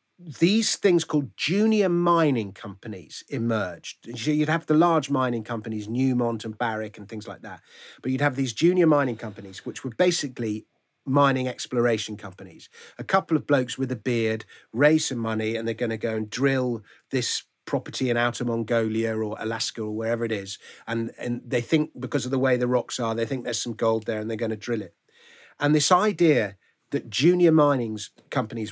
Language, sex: English, male